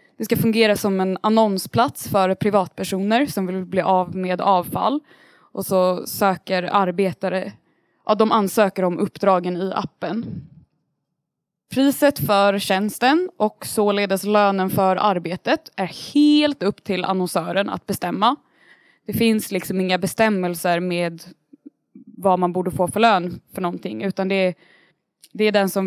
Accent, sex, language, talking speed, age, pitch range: native, female, Swedish, 135 wpm, 20-39, 185-225 Hz